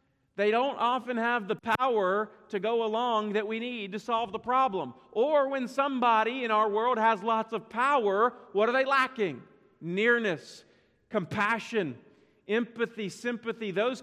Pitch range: 170-235 Hz